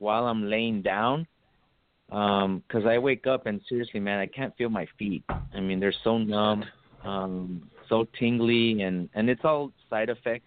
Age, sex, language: 30-49, male, English